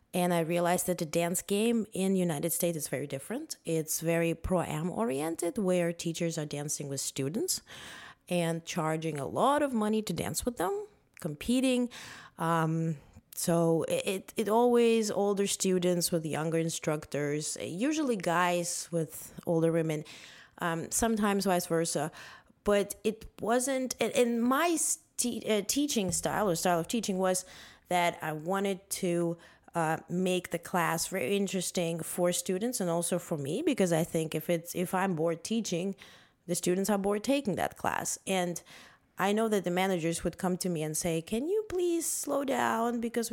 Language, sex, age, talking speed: English, female, 20-39, 165 wpm